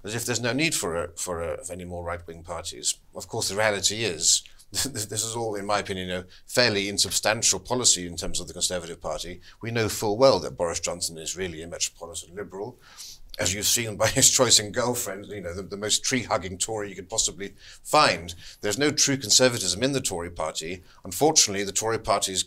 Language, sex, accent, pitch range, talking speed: English, male, British, 90-115 Hz, 210 wpm